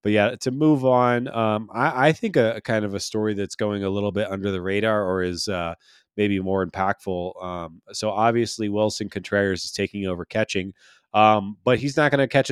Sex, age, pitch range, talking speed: male, 20-39, 95-115 Hz, 215 wpm